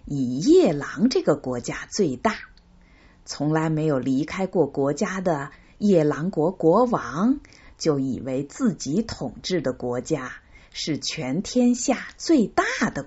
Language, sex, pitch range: Chinese, female, 135-210 Hz